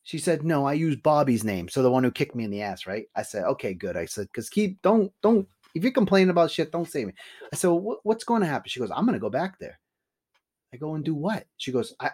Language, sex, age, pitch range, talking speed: English, male, 30-49, 130-195 Hz, 285 wpm